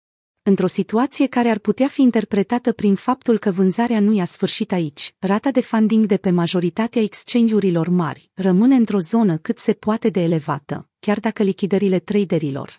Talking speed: 165 wpm